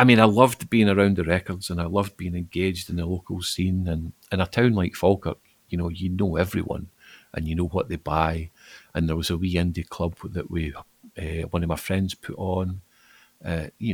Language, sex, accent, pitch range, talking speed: English, male, British, 90-110 Hz, 225 wpm